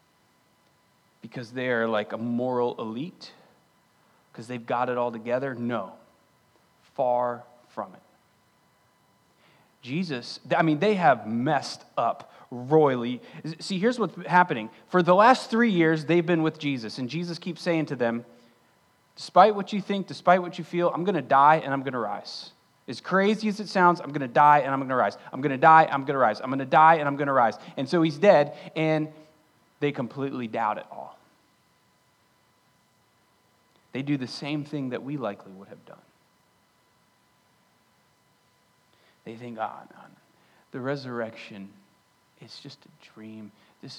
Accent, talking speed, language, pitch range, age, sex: American, 155 wpm, English, 125-170 Hz, 30-49, male